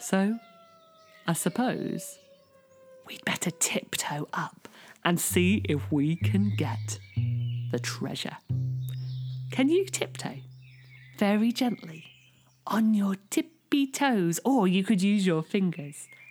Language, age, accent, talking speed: English, 40-59, British, 110 wpm